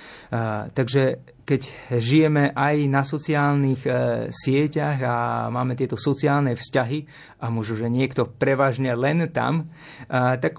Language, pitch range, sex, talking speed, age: Slovak, 125-150 Hz, male, 130 wpm, 30-49